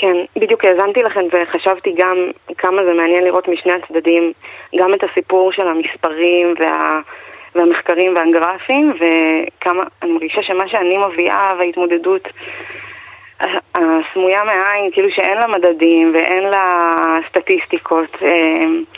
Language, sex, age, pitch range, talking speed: Hebrew, female, 20-39, 170-195 Hz, 110 wpm